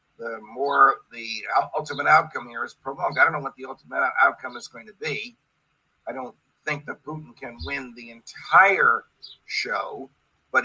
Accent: American